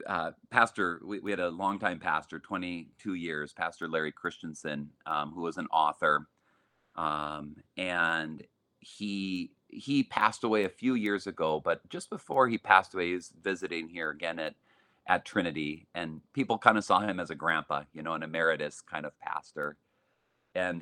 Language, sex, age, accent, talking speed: Swedish, male, 40-59, American, 170 wpm